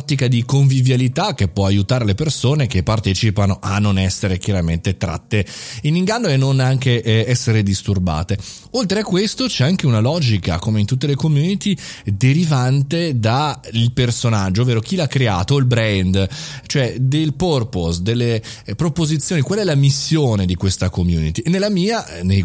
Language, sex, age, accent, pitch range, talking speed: Italian, male, 30-49, native, 100-140 Hz, 155 wpm